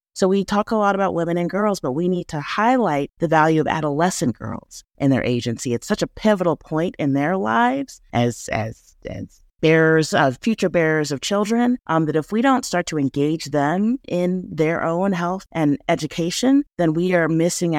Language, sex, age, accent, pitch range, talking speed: English, female, 30-49, American, 145-185 Hz, 195 wpm